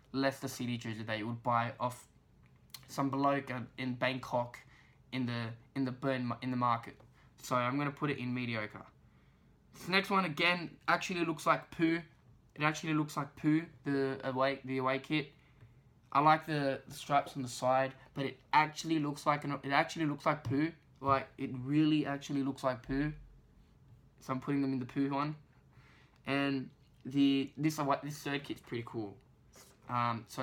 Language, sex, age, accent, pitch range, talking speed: English, male, 10-29, Australian, 125-145 Hz, 180 wpm